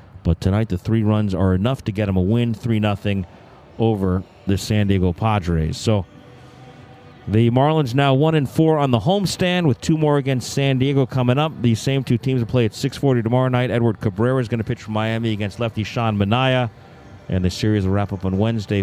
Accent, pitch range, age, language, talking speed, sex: American, 105-135 Hz, 40-59, English, 205 wpm, male